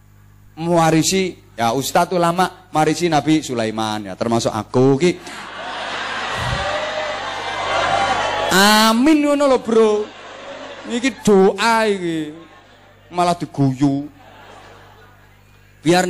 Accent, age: native, 30-49